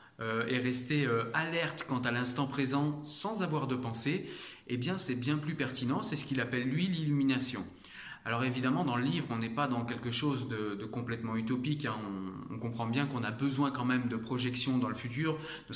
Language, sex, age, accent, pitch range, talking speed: French, male, 30-49, French, 125-150 Hz, 215 wpm